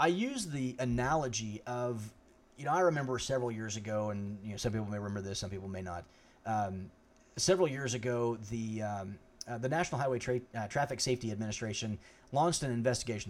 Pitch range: 110-130 Hz